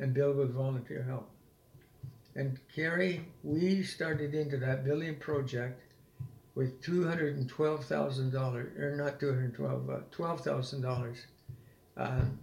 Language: English